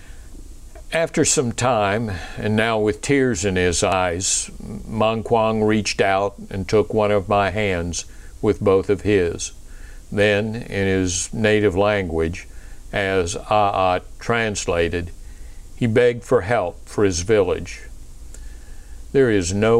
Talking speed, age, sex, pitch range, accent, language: 125 wpm, 60-79, male, 85-110 Hz, American, English